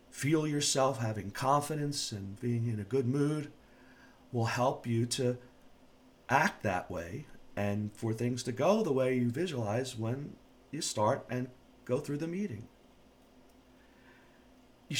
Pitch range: 110-135 Hz